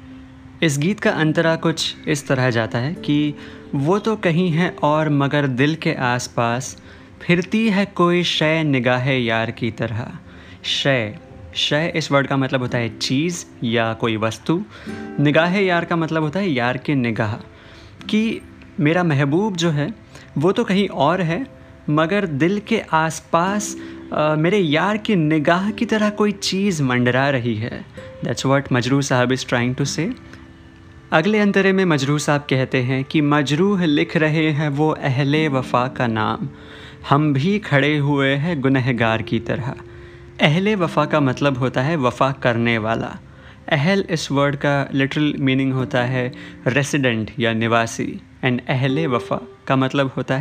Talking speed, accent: 155 wpm, native